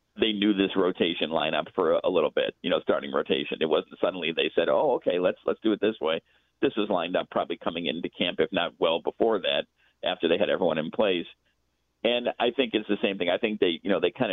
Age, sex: 50-69, male